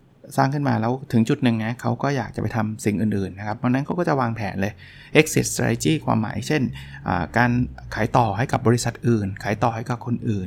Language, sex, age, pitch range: Thai, male, 20-39, 115-140 Hz